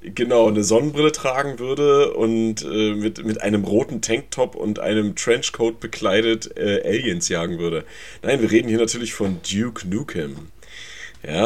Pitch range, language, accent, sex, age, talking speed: 95-110 Hz, German, German, male, 30-49, 150 wpm